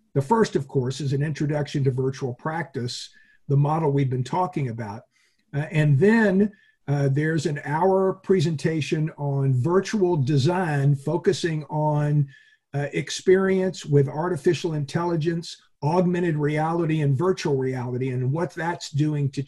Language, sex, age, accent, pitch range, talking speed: English, male, 50-69, American, 140-180 Hz, 135 wpm